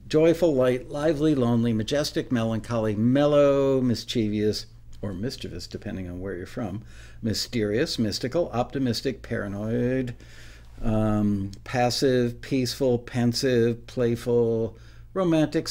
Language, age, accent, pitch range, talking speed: English, 60-79, American, 105-125 Hz, 95 wpm